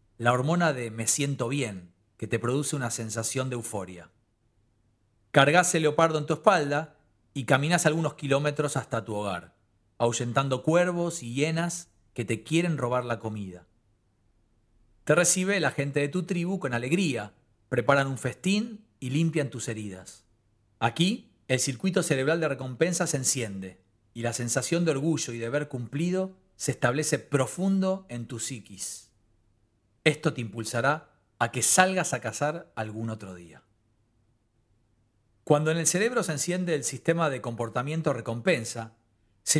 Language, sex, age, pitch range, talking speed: Spanish, male, 40-59, 115-165 Hz, 150 wpm